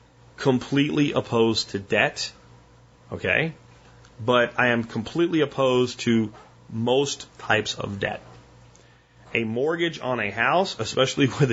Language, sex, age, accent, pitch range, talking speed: English, male, 30-49, American, 105-135 Hz, 115 wpm